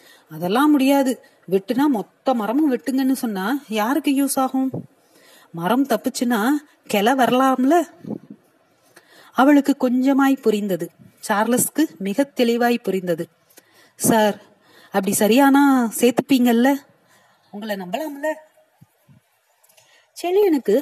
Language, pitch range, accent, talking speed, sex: Tamil, 205-280 Hz, native, 80 wpm, female